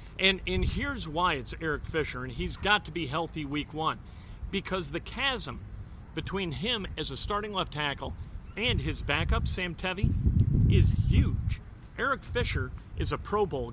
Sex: male